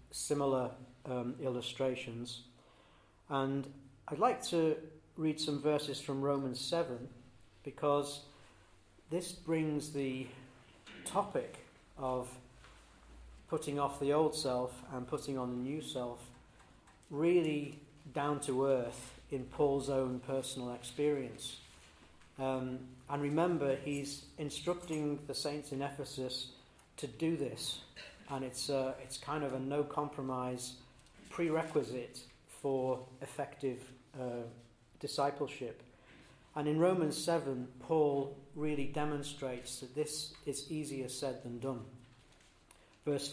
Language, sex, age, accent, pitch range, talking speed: English, male, 40-59, British, 125-150 Hz, 110 wpm